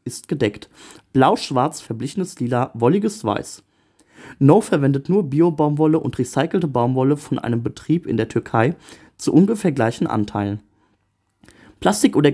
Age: 30-49